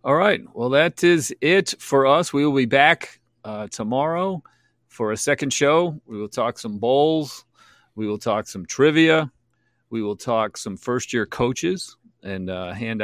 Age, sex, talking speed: 40-59, male, 170 wpm